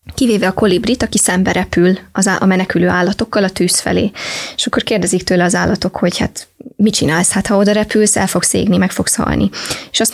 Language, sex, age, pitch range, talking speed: English, female, 20-39, 185-215 Hz, 200 wpm